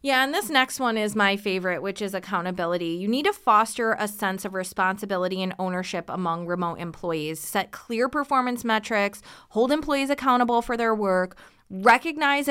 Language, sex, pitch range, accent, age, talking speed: English, female, 185-235 Hz, American, 20-39, 170 wpm